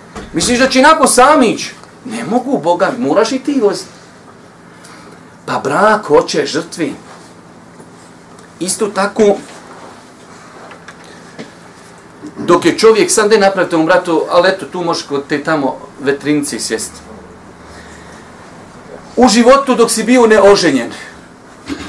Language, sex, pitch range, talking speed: English, male, 155-225 Hz, 115 wpm